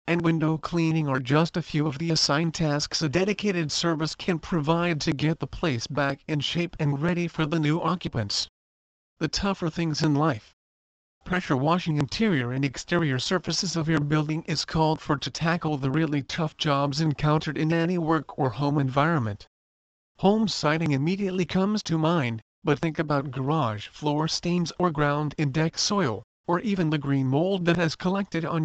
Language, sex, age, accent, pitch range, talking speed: English, male, 40-59, American, 140-170 Hz, 180 wpm